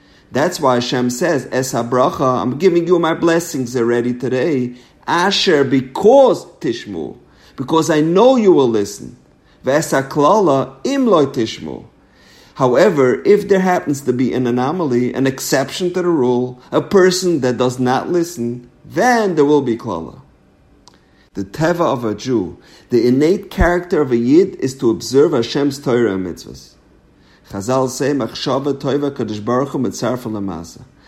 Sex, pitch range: male, 120-170 Hz